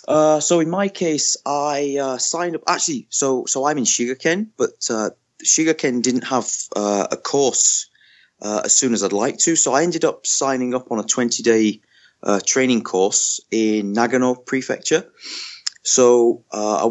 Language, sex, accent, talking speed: English, male, British, 175 wpm